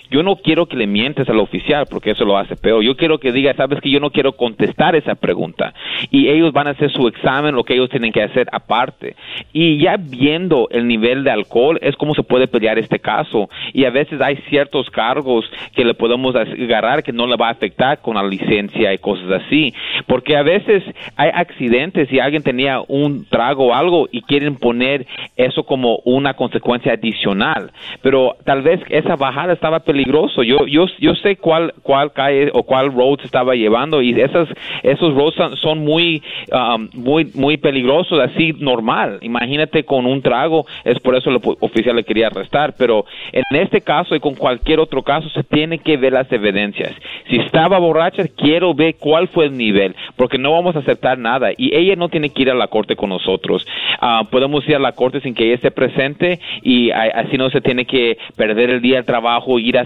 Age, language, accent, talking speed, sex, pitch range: 40-59, Spanish, Mexican, 205 wpm, male, 125-155 Hz